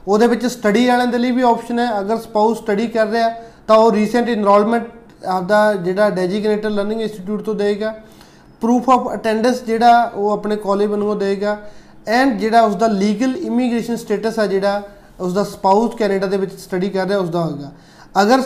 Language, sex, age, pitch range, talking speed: Punjabi, male, 20-39, 205-235 Hz, 185 wpm